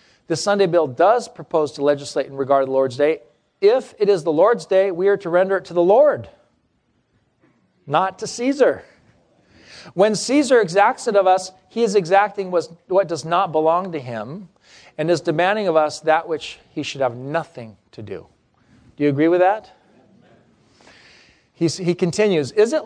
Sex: male